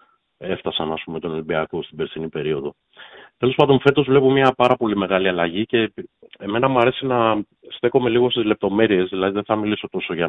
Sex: male